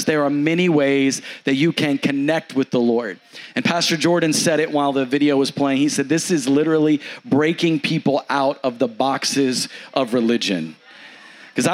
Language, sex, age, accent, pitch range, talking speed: English, male, 40-59, American, 145-170 Hz, 180 wpm